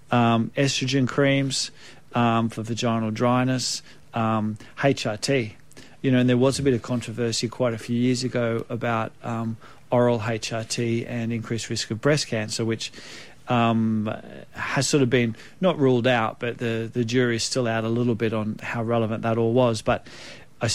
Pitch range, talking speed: 115-130 Hz, 170 wpm